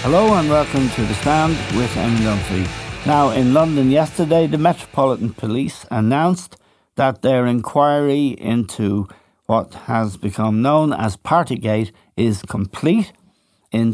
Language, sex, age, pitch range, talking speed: English, male, 60-79, 105-135 Hz, 130 wpm